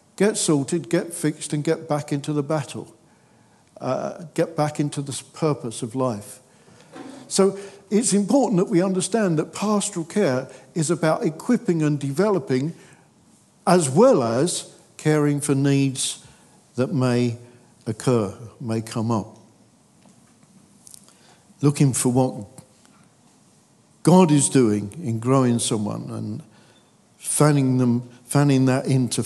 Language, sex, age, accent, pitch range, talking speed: English, male, 50-69, British, 125-175 Hz, 120 wpm